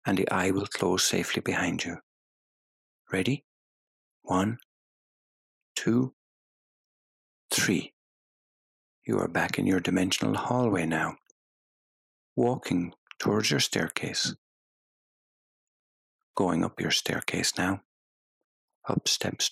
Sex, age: male, 60-79